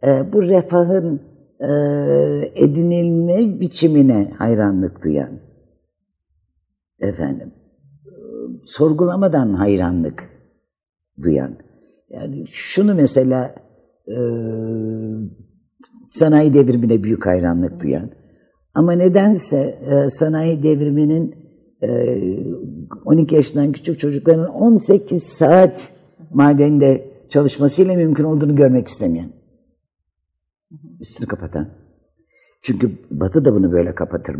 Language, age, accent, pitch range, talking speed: Turkish, 50-69, native, 100-165 Hz, 85 wpm